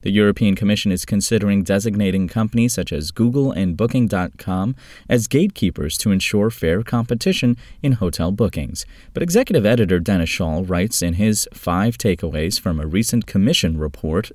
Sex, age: male, 30-49